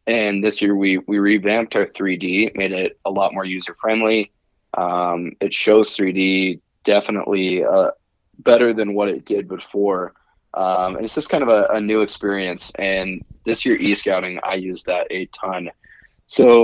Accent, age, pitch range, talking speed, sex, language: American, 20-39, 95-115 Hz, 165 wpm, male, English